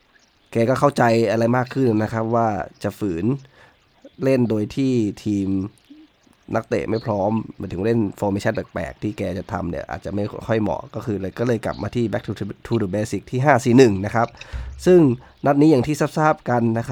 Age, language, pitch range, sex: 20-39, Thai, 105-125 Hz, male